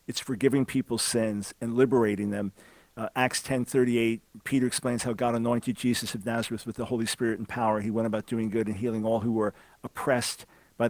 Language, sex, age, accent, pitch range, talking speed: English, male, 50-69, American, 110-130 Hz, 205 wpm